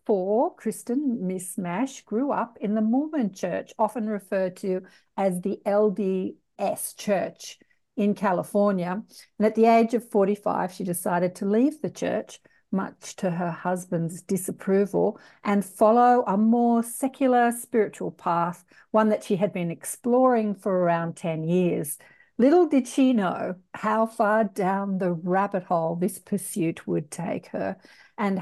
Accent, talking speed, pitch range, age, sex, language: Australian, 145 wpm, 180-225 Hz, 50-69, female, English